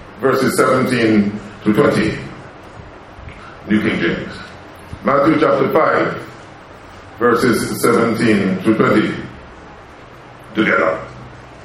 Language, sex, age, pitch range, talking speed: English, male, 50-69, 110-160 Hz, 75 wpm